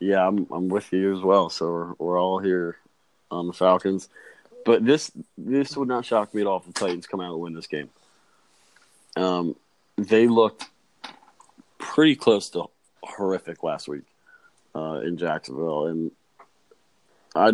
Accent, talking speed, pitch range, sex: American, 160 wpm, 85-100 Hz, male